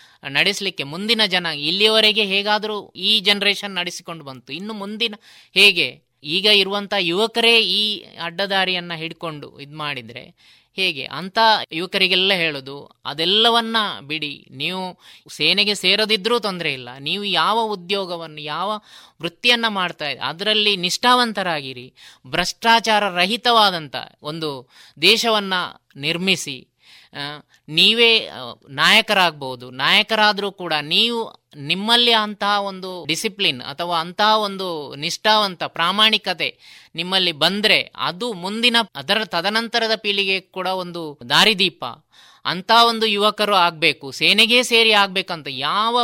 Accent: native